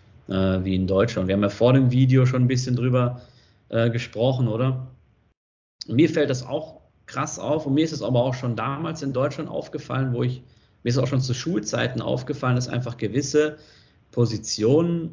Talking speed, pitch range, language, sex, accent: 185 wpm, 105-130 Hz, German, male, German